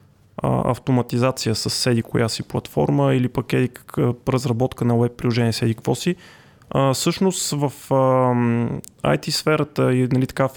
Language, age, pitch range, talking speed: Bulgarian, 20-39, 120-145 Hz, 120 wpm